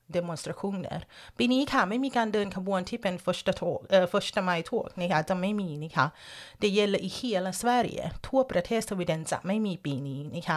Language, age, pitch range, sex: Thai, 30-49, 165-220 Hz, female